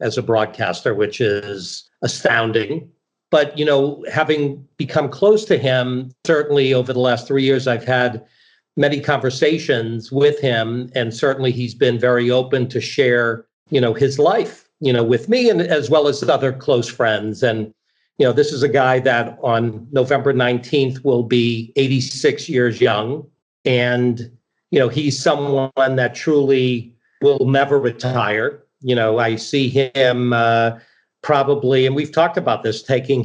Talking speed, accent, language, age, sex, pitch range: 160 wpm, American, English, 50-69, male, 120-140 Hz